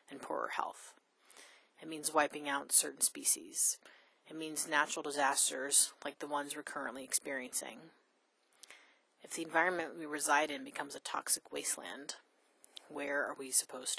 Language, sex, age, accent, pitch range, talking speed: English, female, 30-49, American, 150-185 Hz, 140 wpm